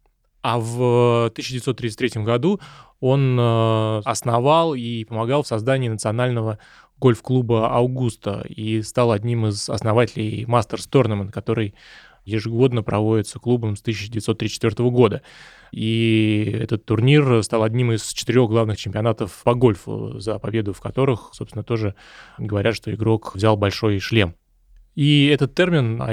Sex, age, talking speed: male, 20-39, 120 wpm